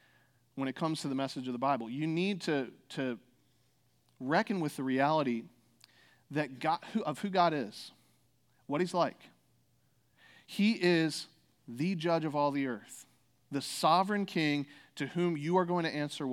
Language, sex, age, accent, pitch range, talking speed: English, male, 40-59, American, 130-160 Hz, 165 wpm